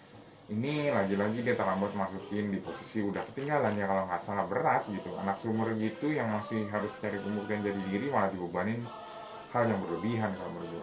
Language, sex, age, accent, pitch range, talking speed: Indonesian, male, 20-39, native, 100-125 Hz, 185 wpm